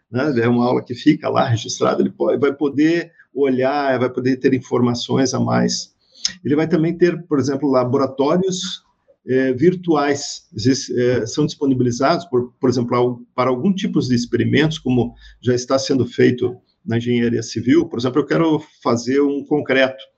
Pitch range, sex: 125-165 Hz, male